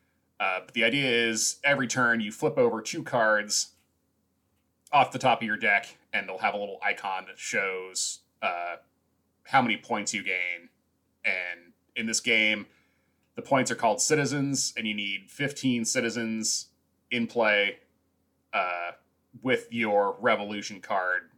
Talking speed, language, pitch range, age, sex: 150 wpm, English, 100-125 Hz, 30-49, male